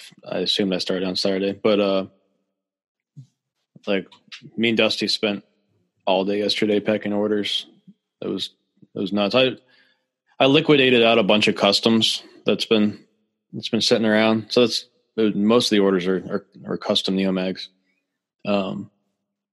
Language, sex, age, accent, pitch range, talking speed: English, male, 20-39, American, 95-120 Hz, 155 wpm